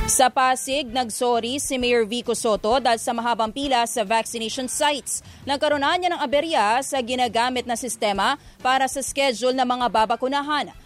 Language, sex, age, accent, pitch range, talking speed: English, female, 20-39, Filipino, 240-275 Hz, 155 wpm